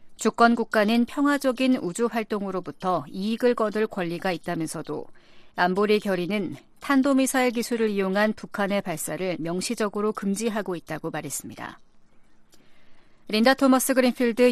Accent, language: native, Korean